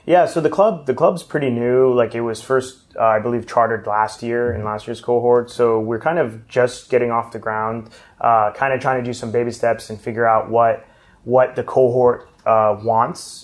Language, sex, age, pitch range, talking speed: English, male, 30-49, 110-130 Hz, 220 wpm